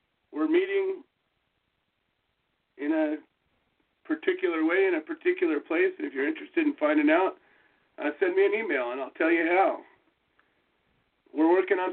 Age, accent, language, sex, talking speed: 40-59, American, English, male, 145 wpm